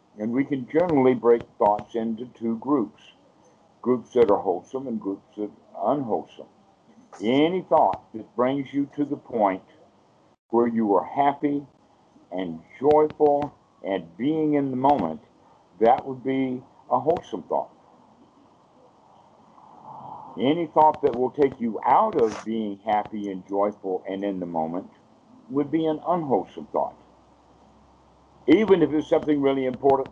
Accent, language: American, English